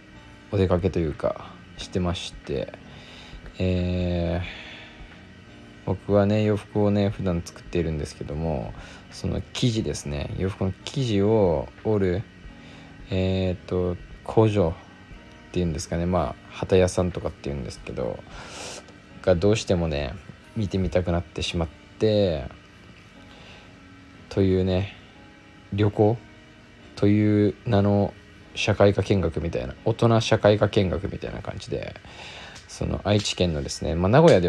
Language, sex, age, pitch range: Japanese, male, 20-39, 85-100 Hz